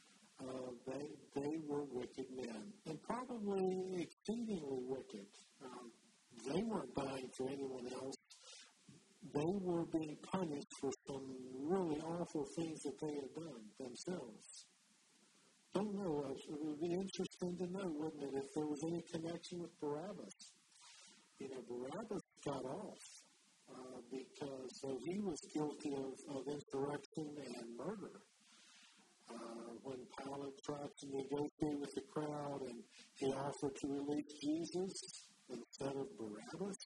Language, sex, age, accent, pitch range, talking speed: English, male, 50-69, American, 135-185 Hz, 135 wpm